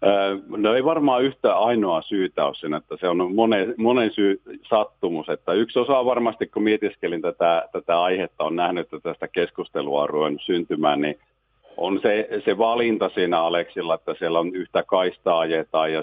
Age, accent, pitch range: 50-69, native, 90-105 Hz